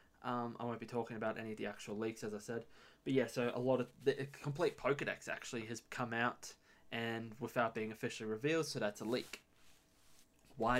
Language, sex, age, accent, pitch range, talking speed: English, male, 20-39, Australian, 110-135 Hz, 205 wpm